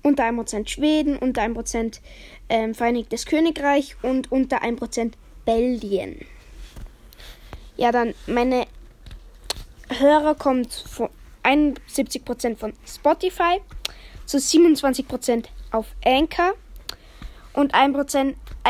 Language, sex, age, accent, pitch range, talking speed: German, female, 10-29, German, 240-300 Hz, 90 wpm